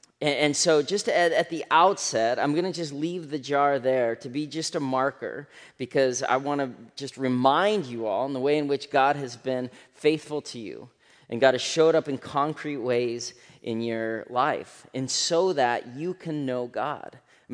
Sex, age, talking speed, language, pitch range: male, 30-49, 190 wpm, English, 130-160 Hz